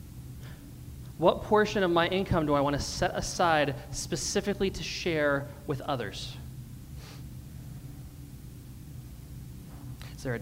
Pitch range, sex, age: 135-195 Hz, male, 30-49